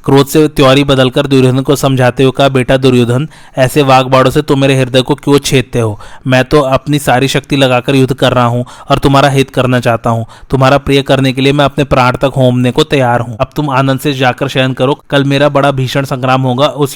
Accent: native